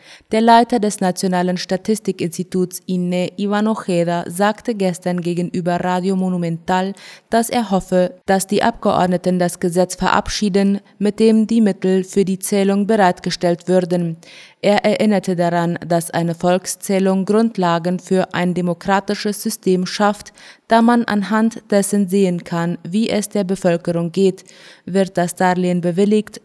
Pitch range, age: 175-205 Hz, 20-39